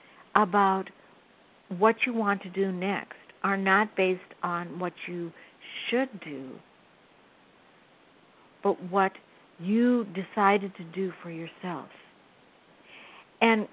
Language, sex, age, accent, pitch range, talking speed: English, female, 60-79, American, 180-210 Hz, 105 wpm